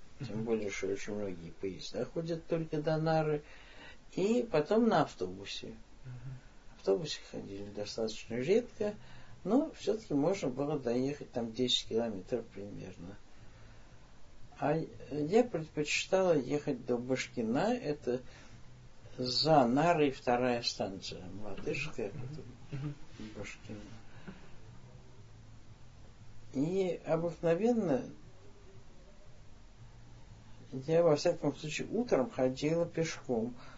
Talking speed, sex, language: 90 wpm, male, Russian